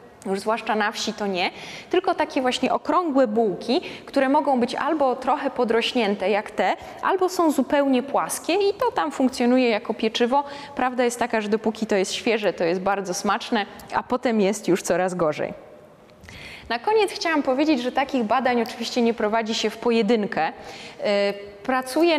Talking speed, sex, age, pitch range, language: 165 wpm, female, 20-39, 200-260 Hz, Polish